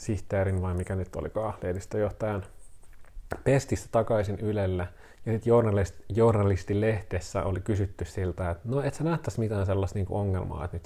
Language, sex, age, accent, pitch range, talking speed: Finnish, male, 30-49, native, 90-110 Hz, 155 wpm